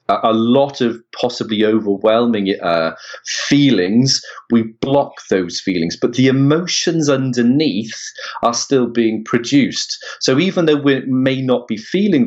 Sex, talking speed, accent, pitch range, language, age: male, 130 wpm, British, 110-145 Hz, English, 30-49